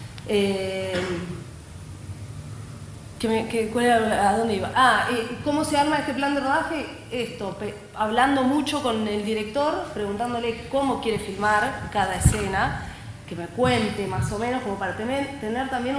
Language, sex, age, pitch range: Spanish, female, 30-49, 195-245 Hz